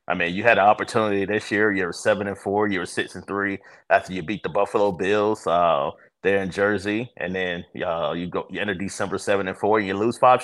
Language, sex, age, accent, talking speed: English, male, 30-49, American, 245 wpm